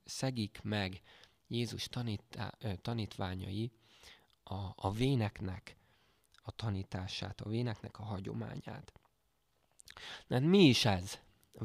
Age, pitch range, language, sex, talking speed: 20-39, 100-125 Hz, Hungarian, male, 100 wpm